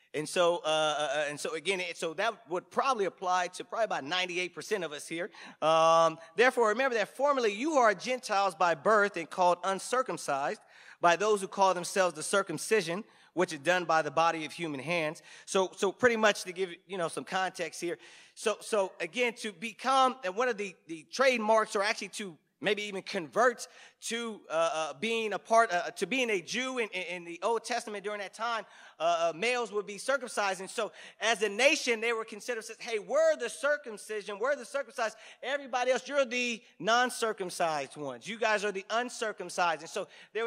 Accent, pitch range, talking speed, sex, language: American, 180-240 Hz, 195 wpm, male, English